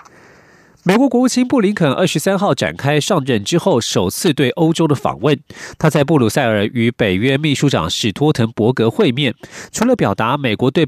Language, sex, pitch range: Chinese, male, 125-185 Hz